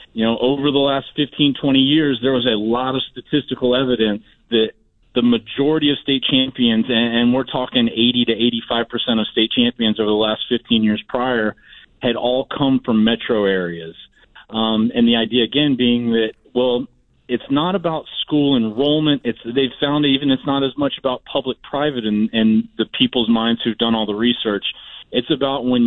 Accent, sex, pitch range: American, male, 115-140 Hz